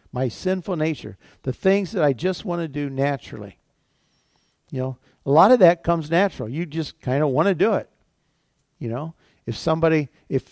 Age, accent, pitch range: 50-69, American, 140-190 Hz